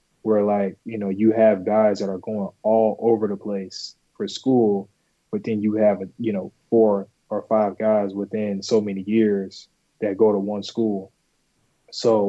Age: 20-39